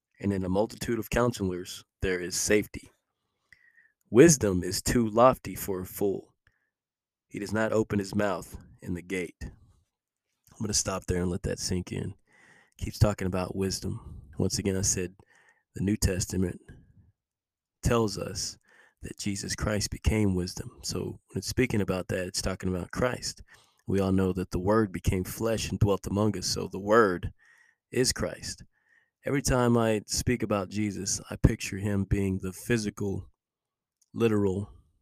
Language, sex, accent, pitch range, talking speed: English, male, American, 95-110 Hz, 160 wpm